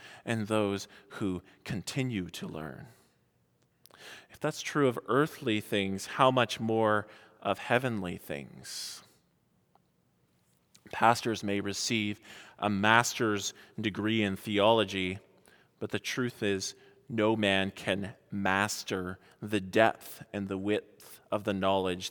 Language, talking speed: English, 115 wpm